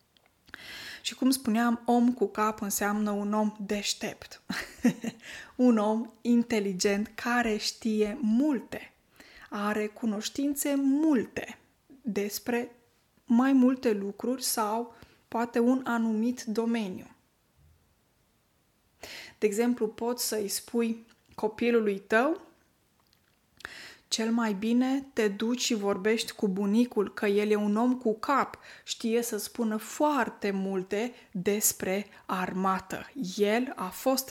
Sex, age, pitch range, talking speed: female, 20-39, 205-240 Hz, 105 wpm